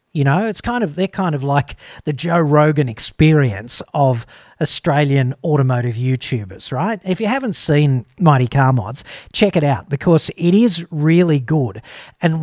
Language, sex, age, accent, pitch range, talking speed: English, male, 50-69, Australian, 130-160 Hz, 165 wpm